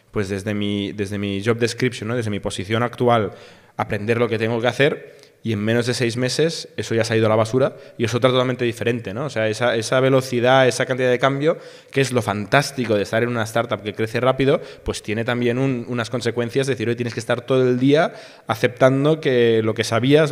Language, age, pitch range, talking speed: Spanish, 20-39, 115-140 Hz, 235 wpm